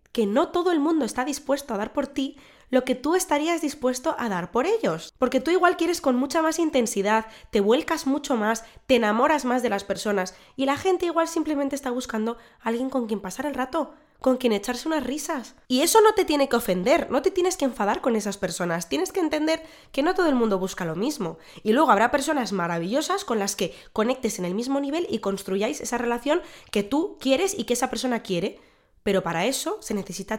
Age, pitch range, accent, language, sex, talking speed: 20-39, 210-295 Hz, Spanish, Spanish, female, 220 wpm